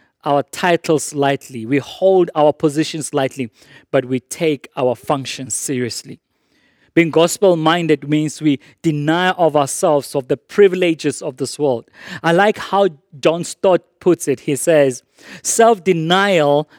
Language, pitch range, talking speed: English, 140-175 Hz, 130 wpm